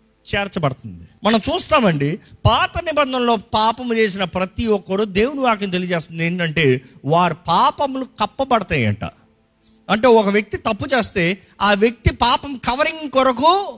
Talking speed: 120 wpm